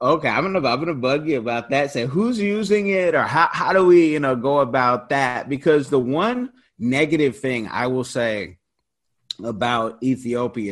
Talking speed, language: 195 wpm, English